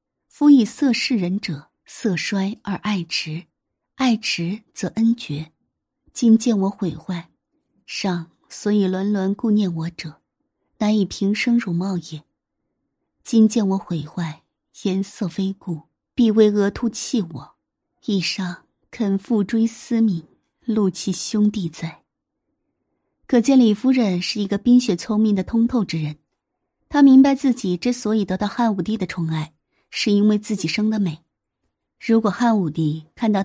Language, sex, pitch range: Chinese, female, 180-235 Hz